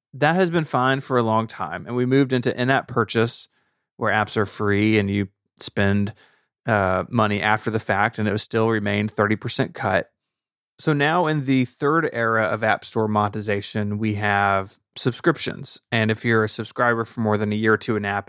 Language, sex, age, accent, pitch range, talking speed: English, male, 30-49, American, 105-120 Hz, 195 wpm